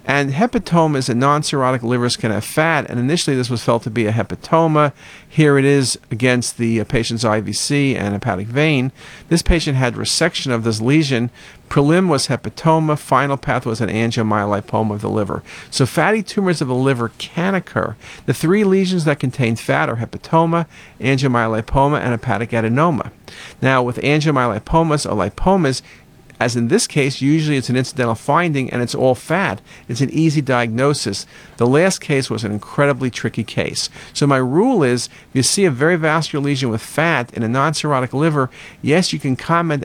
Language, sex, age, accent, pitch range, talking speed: English, male, 50-69, American, 115-150 Hz, 175 wpm